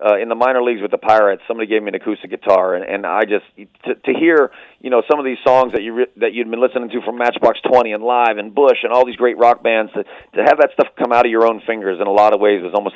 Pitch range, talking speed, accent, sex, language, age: 110-135 Hz, 305 wpm, American, male, English, 40-59